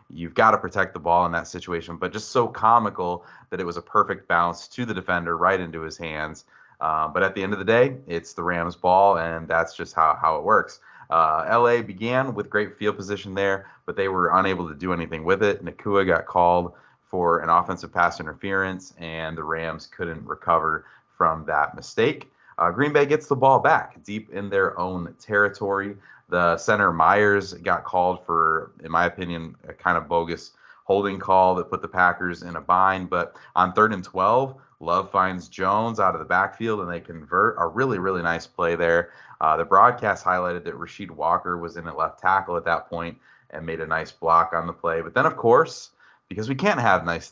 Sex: male